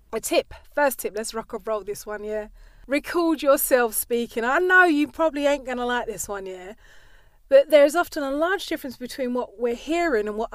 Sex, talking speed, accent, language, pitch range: female, 205 wpm, British, English, 220-290 Hz